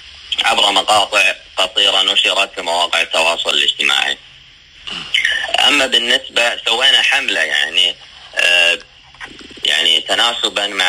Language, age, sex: Arabic, 20-39, male